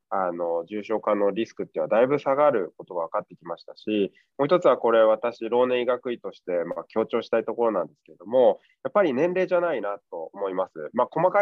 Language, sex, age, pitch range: Japanese, male, 20-39, 110-165 Hz